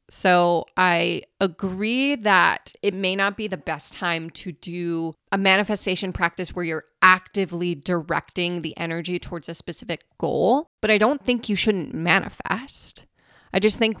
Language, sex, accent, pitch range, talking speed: English, female, American, 165-195 Hz, 155 wpm